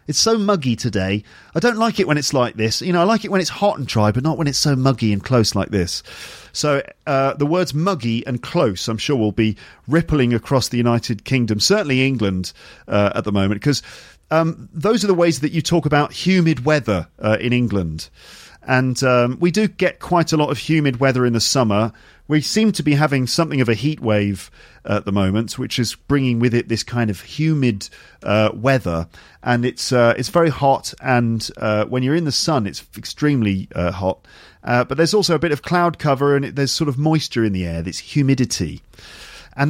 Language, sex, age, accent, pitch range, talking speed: English, male, 40-59, British, 115-160 Hz, 220 wpm